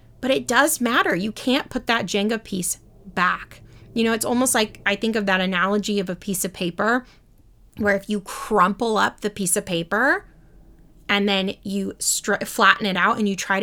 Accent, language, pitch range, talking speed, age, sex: American, English, 195-255 Hz, 195 wpm, 20-39, female